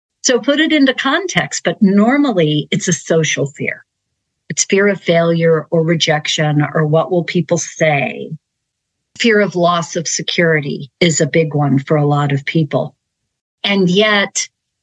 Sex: female